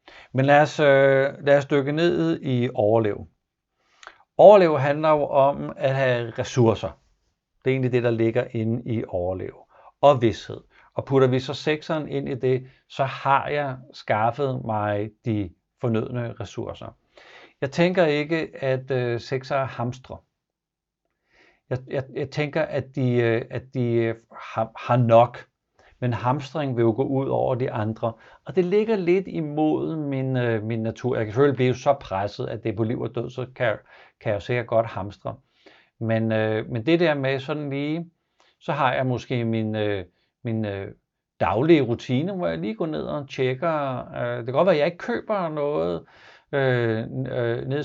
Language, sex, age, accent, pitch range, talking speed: Danish, male, 60-79, native, 115-145 Hz, 175 wpm